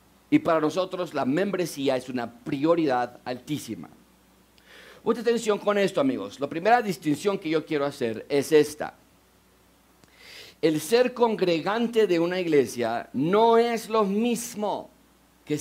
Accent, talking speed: Mexican, 130 wpm